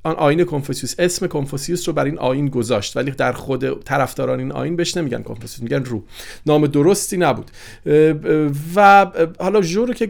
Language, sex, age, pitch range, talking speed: Persian, male, 40-59, 135-185 Hz, 160 wpm